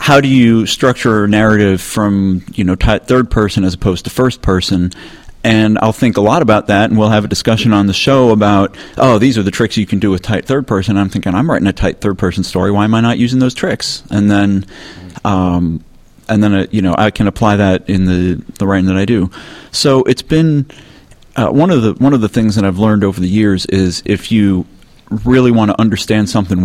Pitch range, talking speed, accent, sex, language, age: 95-110 Hz, 240 wpm, American, male, English, 40-59